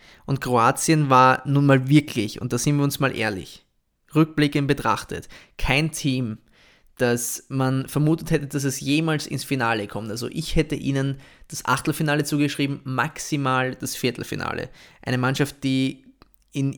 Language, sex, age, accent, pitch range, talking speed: German, male, 20-39, German, 125-145 Hz, 145 wpm